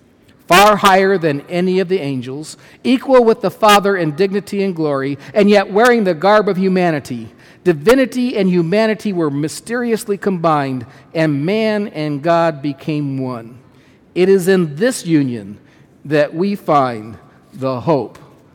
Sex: male